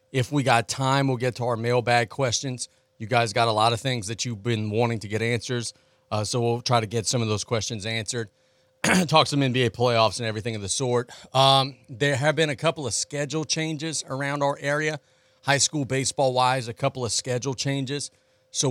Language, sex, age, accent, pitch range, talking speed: English, male, 40-59, American, 105-130 Hz, 210 wpm